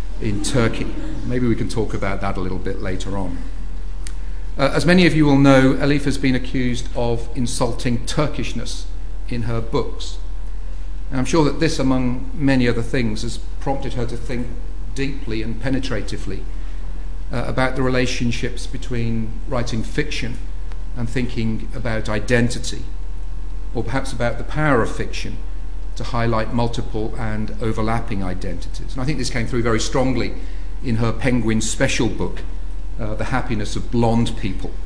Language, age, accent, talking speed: English, 40-59, British, 155 wpm